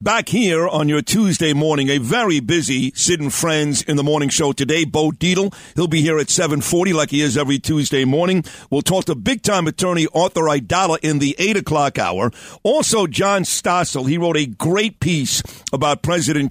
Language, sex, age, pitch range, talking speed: English, male, 50-69, 150-180 Hz, 190 wpm